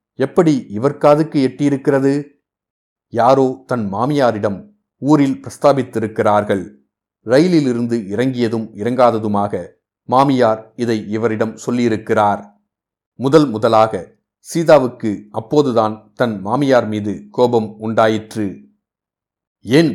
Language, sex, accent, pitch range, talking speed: Tamil, male, native, 105-140 Hz, 70 wpm